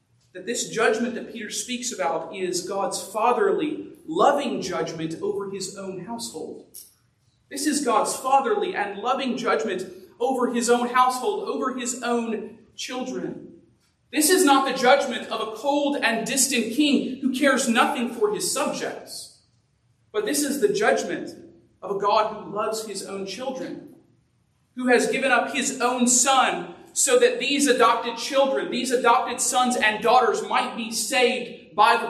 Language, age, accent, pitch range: English, 40-59, American, 200-265 Hz